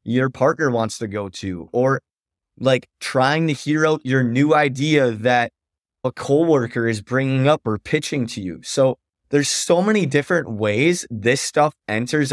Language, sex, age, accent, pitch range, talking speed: English, male, 20-39, American, 120-160 Hz, 165 wpm